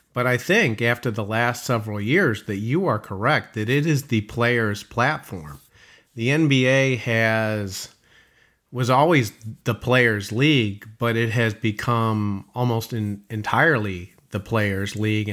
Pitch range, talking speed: 105-120 Hz, 140 wpm